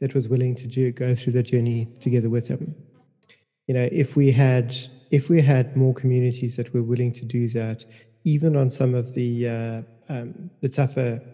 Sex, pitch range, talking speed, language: male, 120-140 Hz, 195 wpm, English